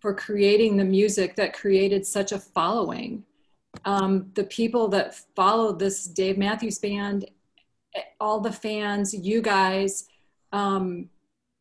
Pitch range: 190-205 Hz